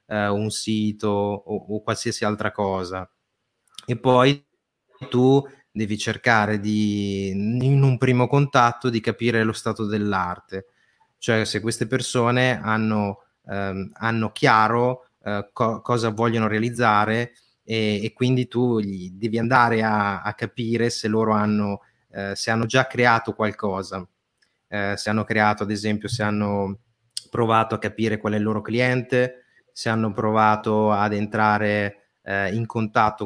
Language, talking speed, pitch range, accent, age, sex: Italian, 130 wpm, 105-115 Hz, native, 30-49, male